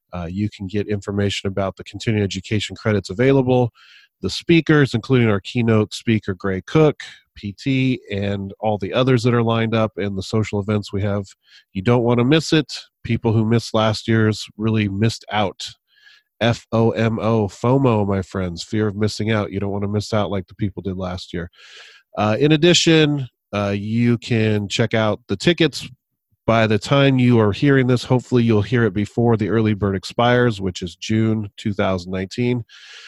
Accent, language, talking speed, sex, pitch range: American, English, 180 wpm, male, 100-120 Hz